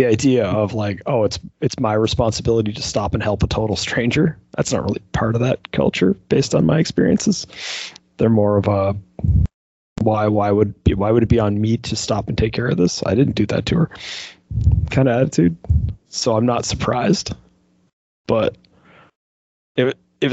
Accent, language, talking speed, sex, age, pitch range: American, English, 185 wpm, male, 30-49, 105-135 Hz